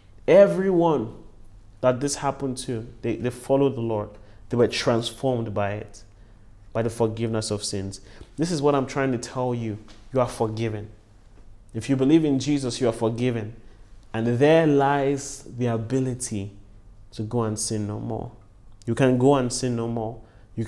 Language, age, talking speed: English, 30-49, 170 wpm